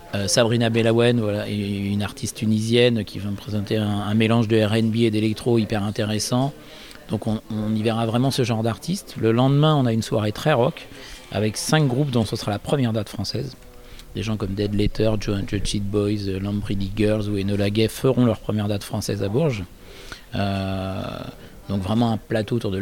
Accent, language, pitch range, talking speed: French, French, 105-120 Hz, 195 wpm